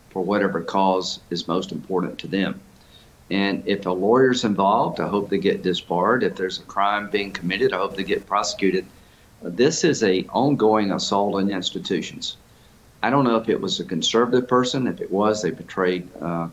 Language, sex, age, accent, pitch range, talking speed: English, male, 50-69, American, 95-105 Hz, 185 wpm